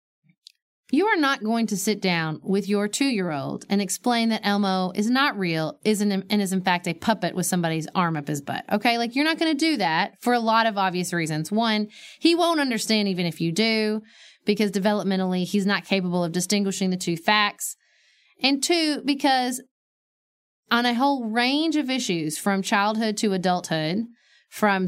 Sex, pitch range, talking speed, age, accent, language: female, 185-245 Hz, 185 wpm, 30-49, American, English